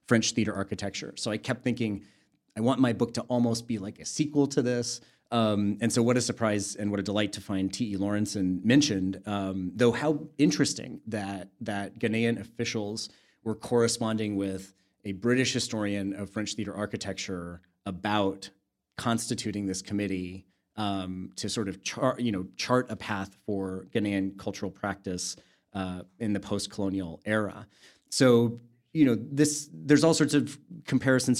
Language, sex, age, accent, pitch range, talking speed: English, male, 30-49, American, 100-115 Hz, 160 wpm